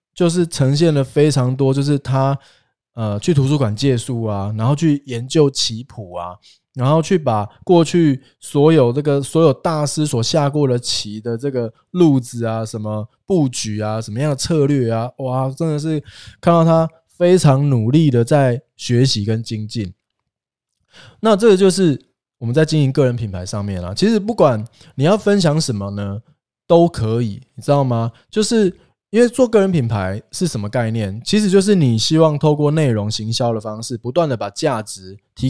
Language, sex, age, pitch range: Chinese, male, 20-39, 115-160 Hz